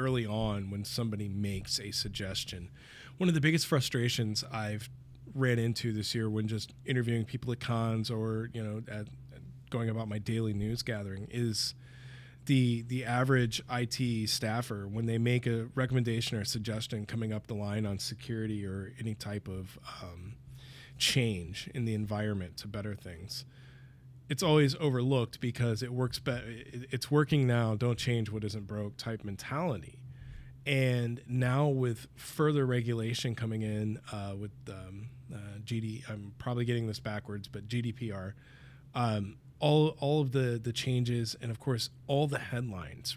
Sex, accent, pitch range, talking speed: male, American, 110-130 Hz, 160 wpm